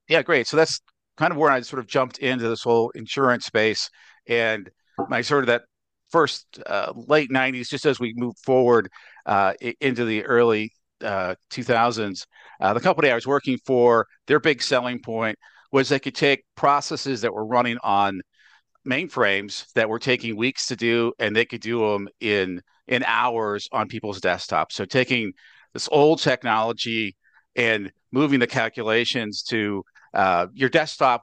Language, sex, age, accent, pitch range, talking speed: English, male, 50-69, American, 110-130 Hz, 165 wpm